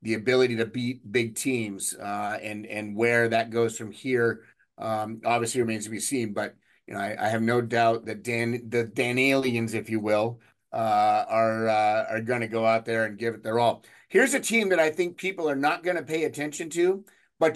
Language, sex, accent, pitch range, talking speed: English, male, American, 115-150 Hz, 220 wpm